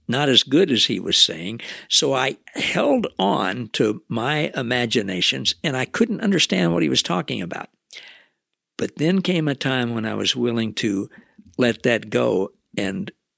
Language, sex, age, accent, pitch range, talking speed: English, male, 60-79, American, 125-185 Hz, 165 wpm